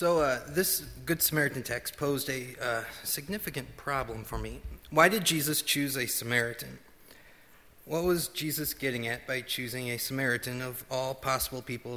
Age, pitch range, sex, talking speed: 30-49, 120-155 Hz, male, 155 wpm